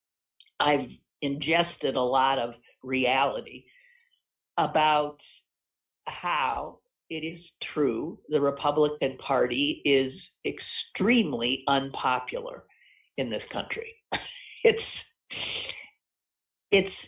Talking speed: 75 wpm